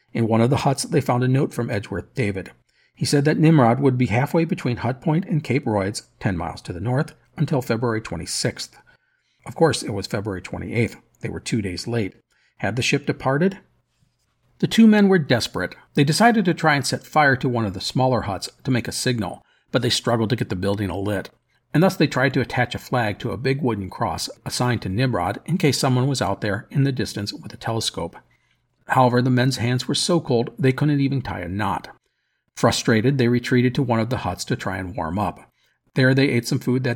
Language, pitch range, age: English, 110-140 Hz, 50-69